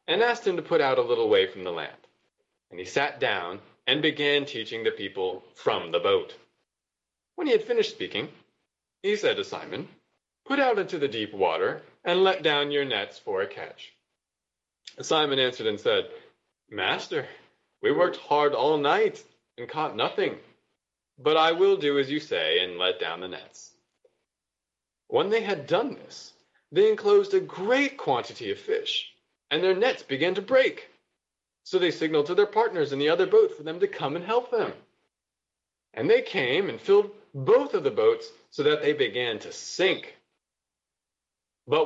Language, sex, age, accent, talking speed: English, male, 30-49, American, 175 wpm